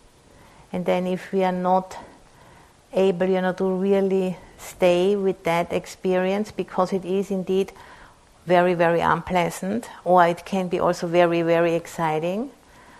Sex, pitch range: female, 175-190 Hz